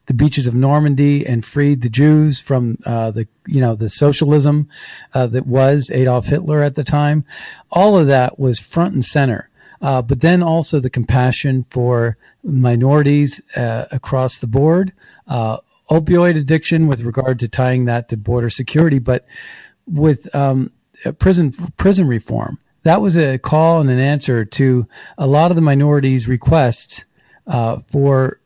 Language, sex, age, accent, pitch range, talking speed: English, male, 40-59, American, 125-155 Hz, 160 wpm